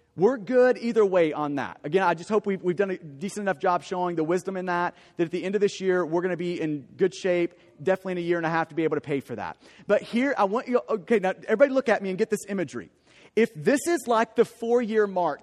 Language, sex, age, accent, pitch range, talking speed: English, male, 30-49, American, 185-230 Hz, 275 wpm